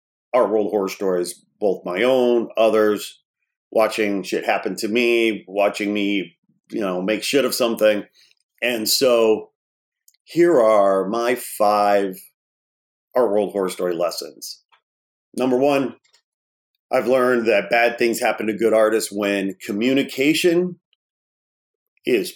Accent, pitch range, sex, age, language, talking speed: American, 100-125 Hz, male, 40-59, English, 125 wpm